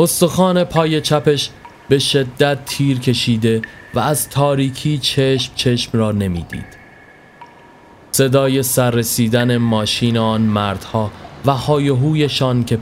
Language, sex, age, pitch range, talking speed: Persian, male, 30-49, 105-130 Hz, 110 wpm